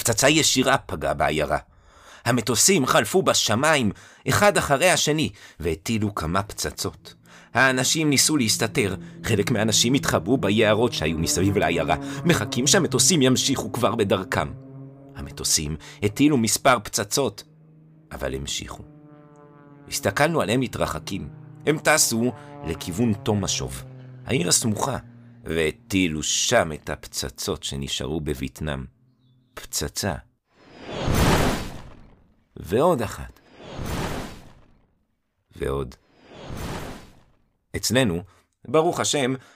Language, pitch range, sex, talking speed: Hebrew, 95-135 Hz, male, 85 wpm